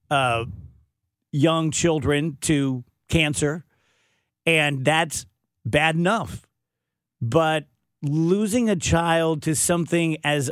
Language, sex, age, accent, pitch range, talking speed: English, male, 50-69, American, 135-165 Hz, 90 wpm